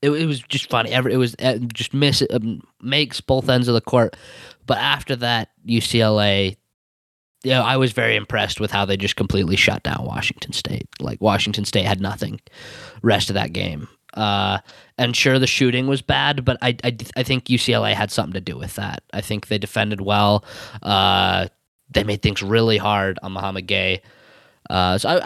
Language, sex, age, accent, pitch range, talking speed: English, male, 20-39, American, 105-120 Hz, 195 wpm